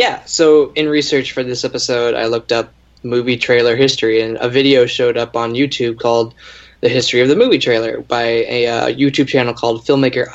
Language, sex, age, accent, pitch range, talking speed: English, male, 10-29, American, 115-140 Hz, 195 wpm